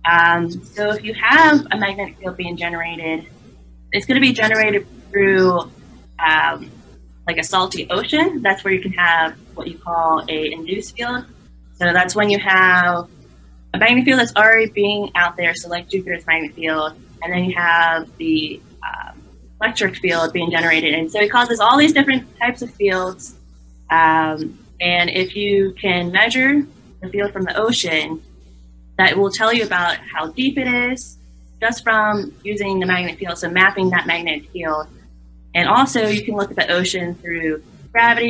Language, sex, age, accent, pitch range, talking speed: English, female, 20-39, American, 160-210 Hz, 170 wpm